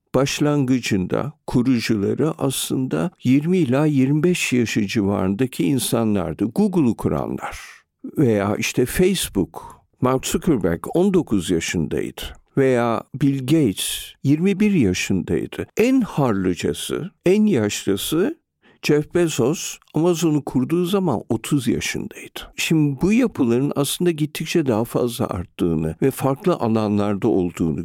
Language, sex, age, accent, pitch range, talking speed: Turkish, male, 50-69, native, 110-170 Hz, 100 wpm